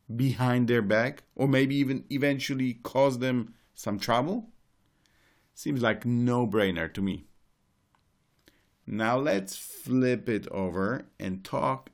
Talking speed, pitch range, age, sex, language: 115 wpm, 100-130 Hz, 50-69, male, English